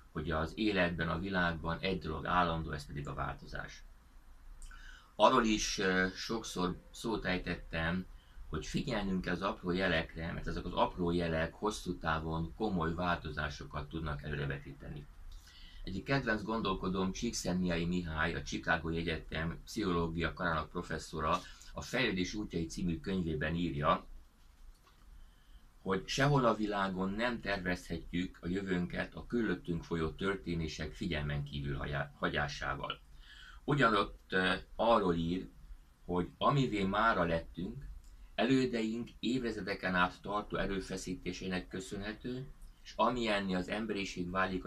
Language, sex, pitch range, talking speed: Hungarian, male, 75-95 Hz, 110 wpm